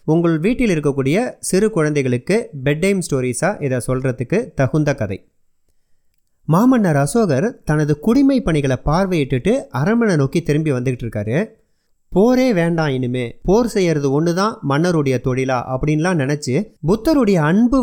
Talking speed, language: 120 wpm, Tamil